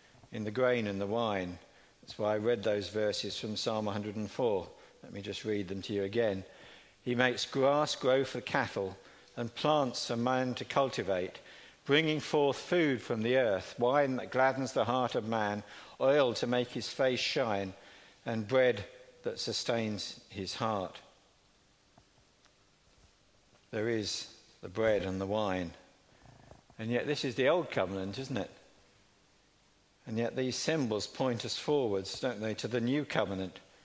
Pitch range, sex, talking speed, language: 100-125 Hz, male, 160 wpm, English